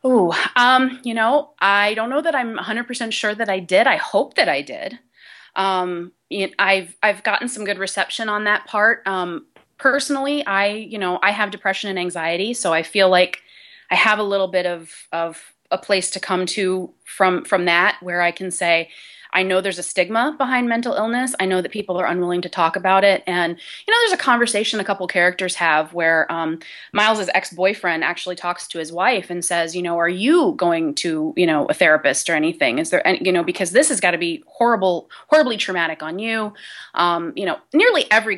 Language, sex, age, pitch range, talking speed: English, female, 30-49, 175-230 Hz, 210 wpm